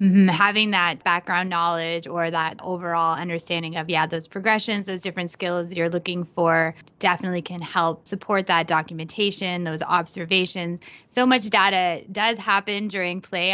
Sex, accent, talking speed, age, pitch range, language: female, American, 155 wpm, 20-39, 165-195 Hz, English